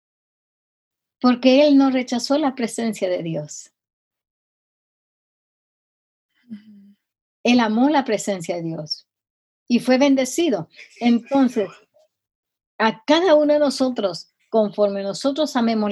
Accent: American